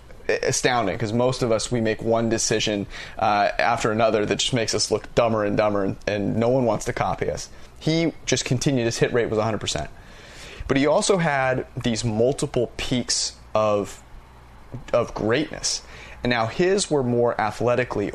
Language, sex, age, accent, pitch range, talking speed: English, male, 30-49, American, 105-125 Hz, 170 wpm